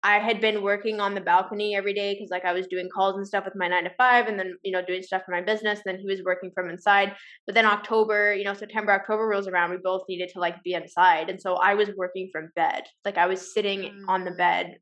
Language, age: English, 10-29